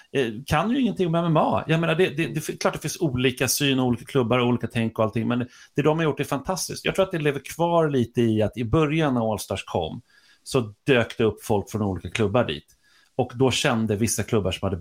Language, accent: Swedish, native